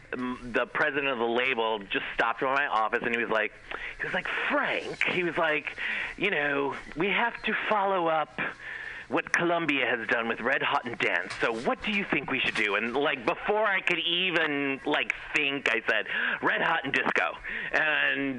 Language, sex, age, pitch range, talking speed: English, male, 40-59, 110-150 Hz, 195 wpm